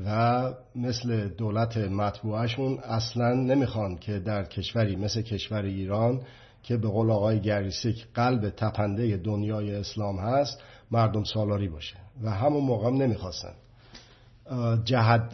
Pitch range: 110-130 Hz